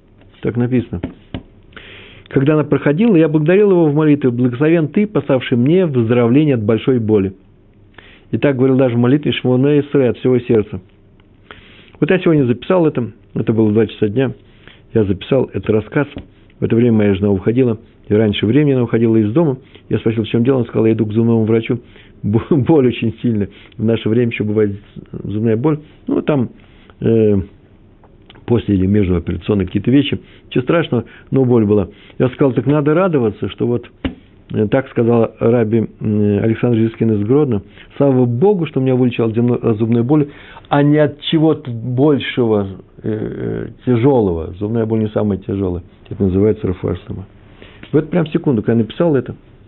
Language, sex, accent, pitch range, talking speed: Russian, male, native, 100-130 Hz, 160 wpm